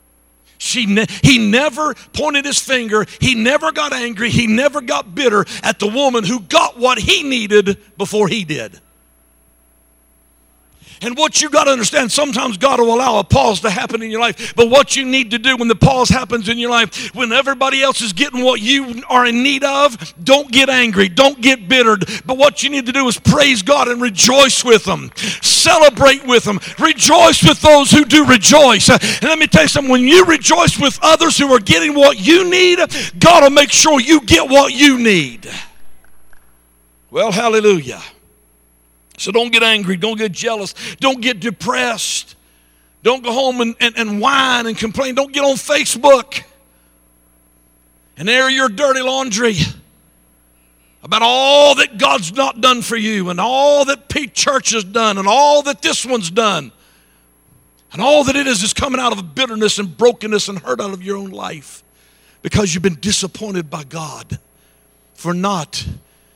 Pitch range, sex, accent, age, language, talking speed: 185-270 Hz, male, American, 60-79, English, 180 wpm